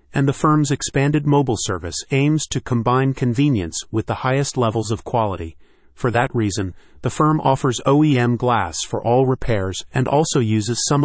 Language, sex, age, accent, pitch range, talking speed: English, male, 30-49, American, 110-135 Hz, 170 wpm